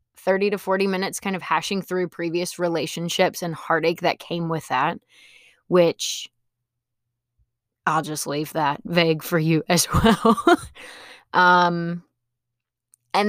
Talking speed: 125 wpm